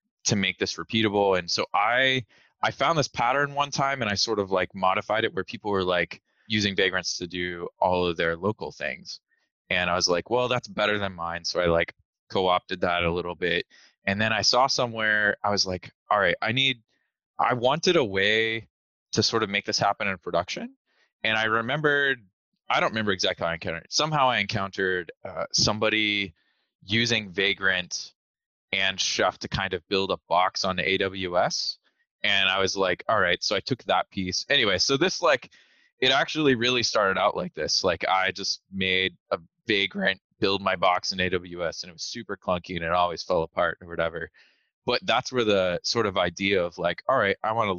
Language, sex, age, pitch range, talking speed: English, male, 20-39, 90-110 Hz, 205 wpm